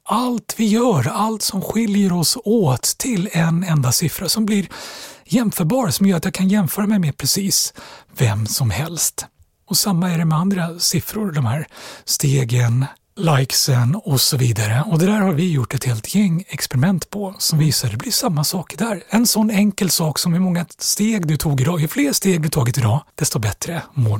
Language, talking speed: Swedish, 200 wpm